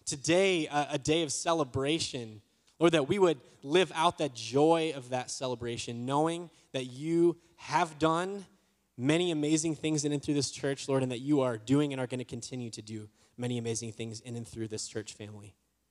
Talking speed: 195 wpm